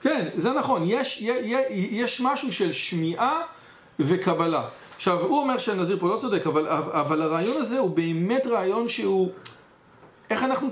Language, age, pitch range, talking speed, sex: English, 40-59, 165-245 Hz, 150 wpm, male